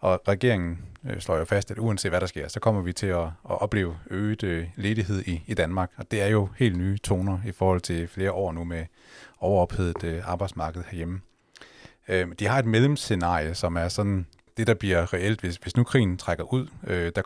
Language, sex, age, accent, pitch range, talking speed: Danish, male, 30-49, native, 85-105 Hz, 200 wpm